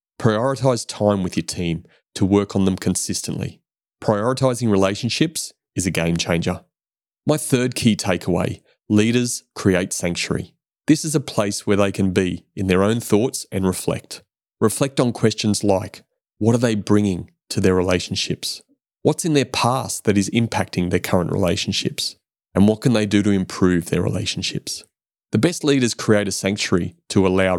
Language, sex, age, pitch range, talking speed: English, male, 30-49, 95-125 Hz, 165 wpm